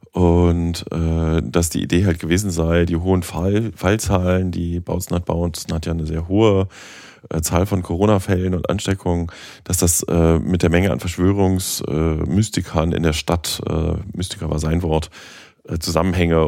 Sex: male